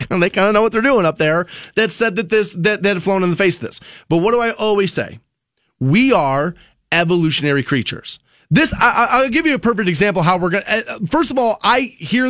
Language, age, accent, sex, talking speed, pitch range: English, 30-49, American, male, 225 wpm, 160-220 Hz